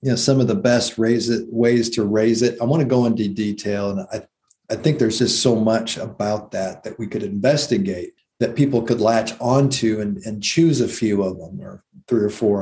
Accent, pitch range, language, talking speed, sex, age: American, 110-135 Hz, English, 220 wpm, male, 50-69